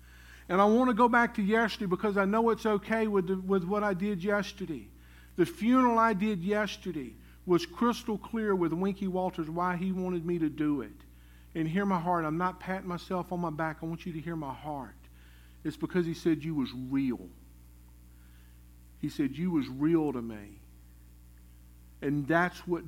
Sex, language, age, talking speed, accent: male, English, 50-69, 190 wpm, American